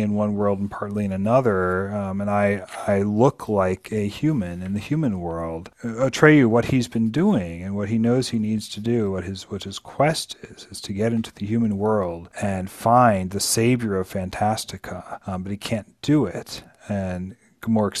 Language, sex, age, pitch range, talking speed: English, male, 40-59, 100-125 Hz, 195 wpm